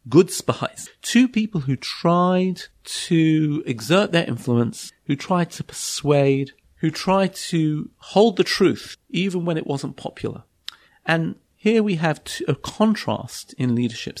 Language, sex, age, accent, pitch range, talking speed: English, male, 40-59, British, 135-185 Hz, 140 wpm